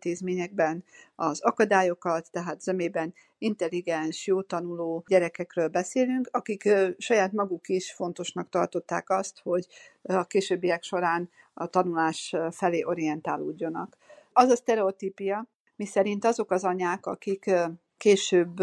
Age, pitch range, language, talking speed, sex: 50-69, 175-200 Hz, Hungarian, 115 wpm, female